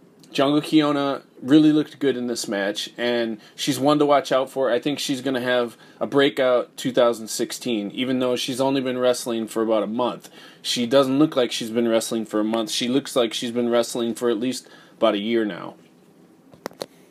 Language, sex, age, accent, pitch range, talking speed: English, male, 20-39, American, 130-155 Hz, 200 wpm